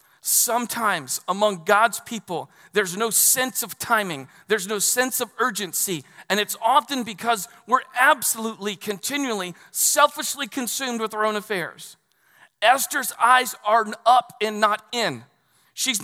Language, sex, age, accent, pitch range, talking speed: English, male, 40-59, American, 190-245 Hz, 130 wpm